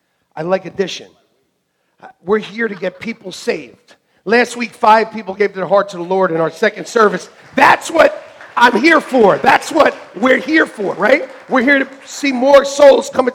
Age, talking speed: 50-69, 185 wpm